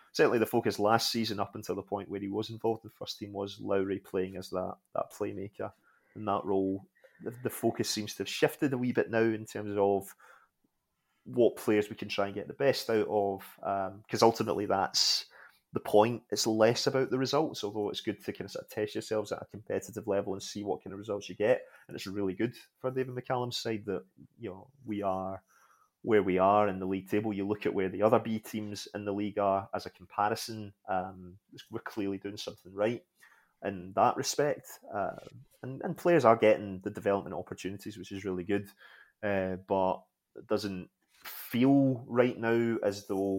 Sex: male